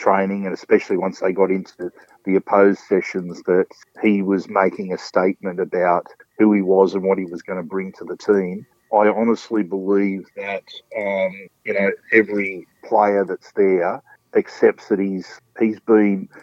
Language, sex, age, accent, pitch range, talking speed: English, male, 50-69, Australian, 95-105 Hz, 170 wpm